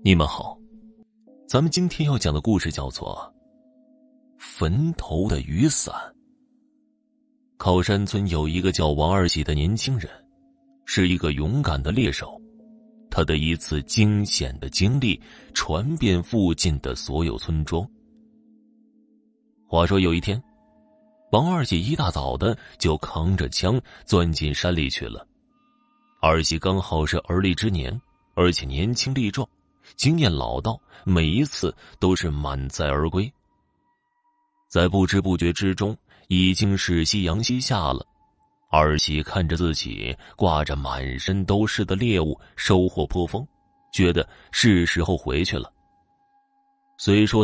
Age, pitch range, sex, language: 30-49, 85-135 Hz, male, Chinese